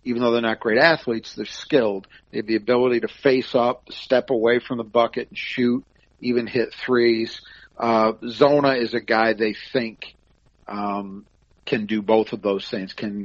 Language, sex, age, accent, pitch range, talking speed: English, male, 40-59, American, 105-130 Hz, 180 wpm